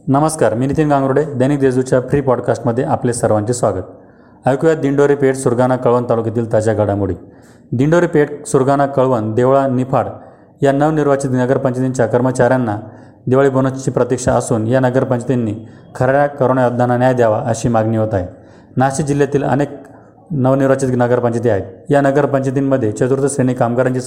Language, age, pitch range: Marathi, 30-49, 120-140 Hz